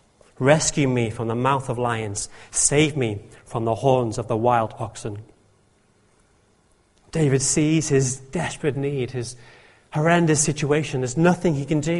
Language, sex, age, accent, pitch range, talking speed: English, male, 30-49, British, 115-160 Hz, 145 wpm